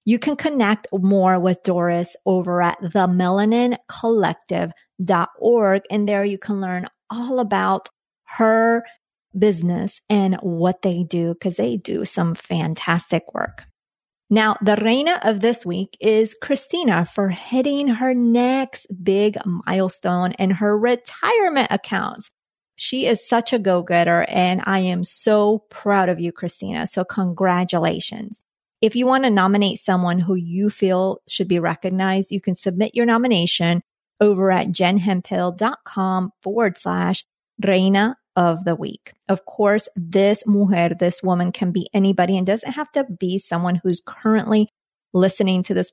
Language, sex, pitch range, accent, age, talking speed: English, female, 180-220 Hz, American, 30-49, 140 wpm